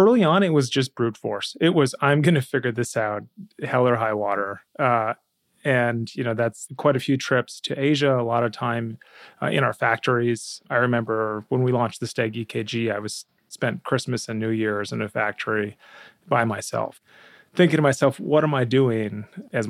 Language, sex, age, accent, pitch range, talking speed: English, male, 30-49, American, 110-135 Hz, 200 wpm